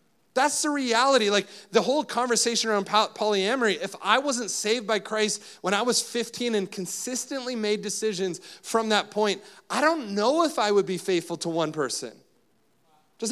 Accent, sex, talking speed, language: American, male, 170 wpm, English